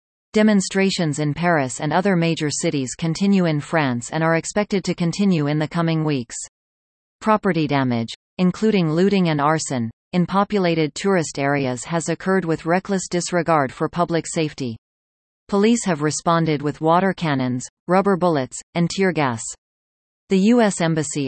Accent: American